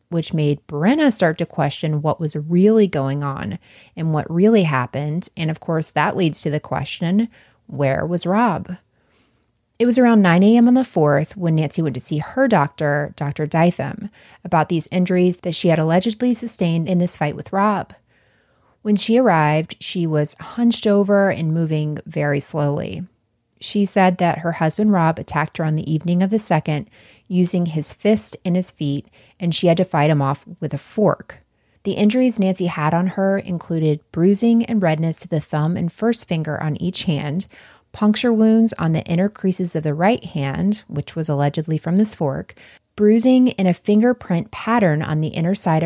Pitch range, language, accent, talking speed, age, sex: 155-200 Hz, English, American, 185 wpm, 30-49, female